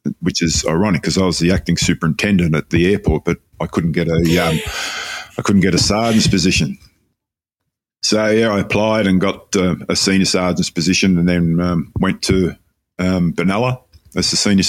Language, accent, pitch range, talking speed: English, Australian, 85-100 Hz, 185 wpm